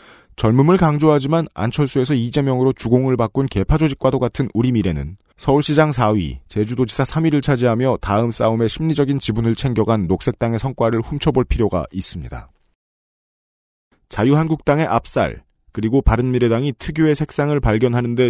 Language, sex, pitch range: Korean, male, 105-140 Hz